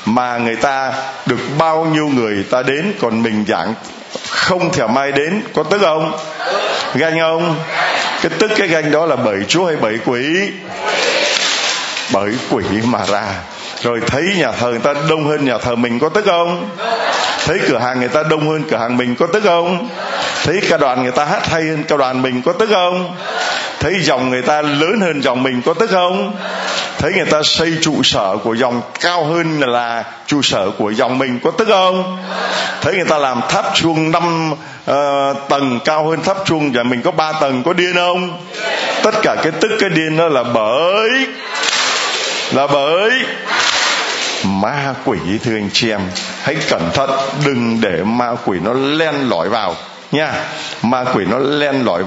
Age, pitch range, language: 20-39, 125-165 Hz, Vietnamese